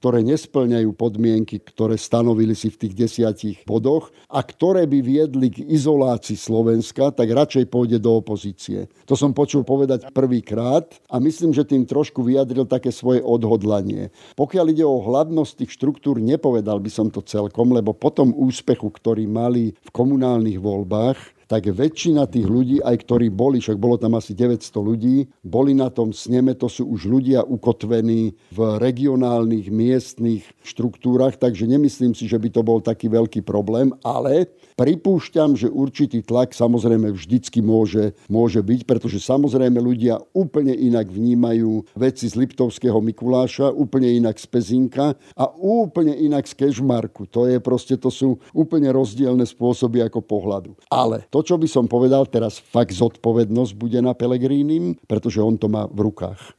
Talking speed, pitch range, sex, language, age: 155 wpm, 110-130 Hz, male, Slovak, 50-69